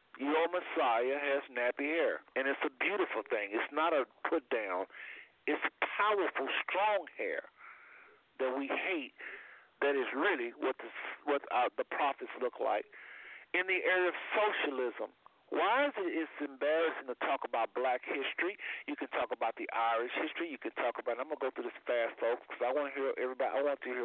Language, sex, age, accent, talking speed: English, male, 50-69, American, 180 wpm